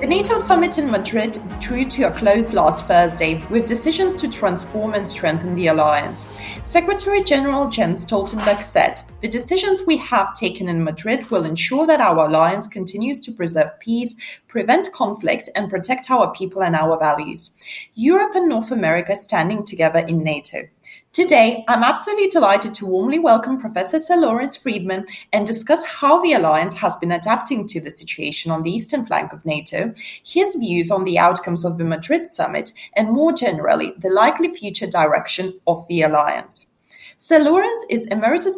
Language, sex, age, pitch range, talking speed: English, female, 30-49, 180-280 Hz, 165 wpm